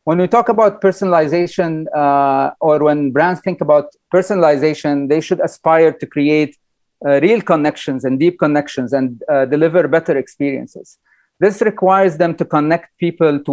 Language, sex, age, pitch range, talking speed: English, male, 40-59, 140-175 Hz, 155 wpm